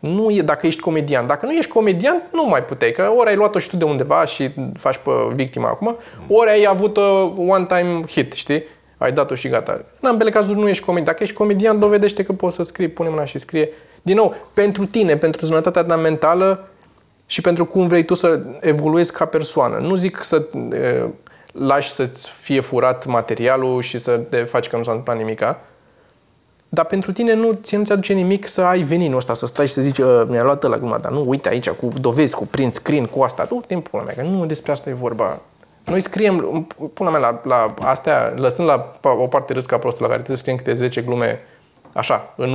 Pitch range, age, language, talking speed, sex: 130-190 Hz, 20-39, Romanian, 205 wpm, male